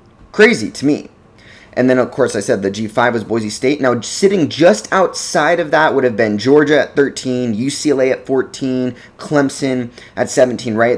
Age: 20-39